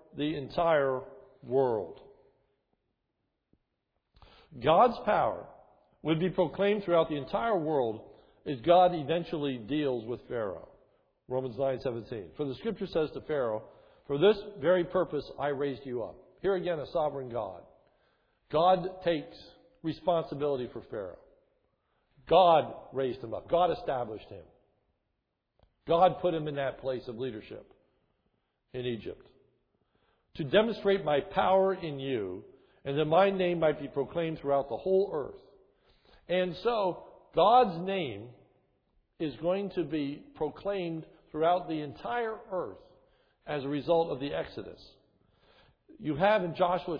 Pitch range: 140-185 Hz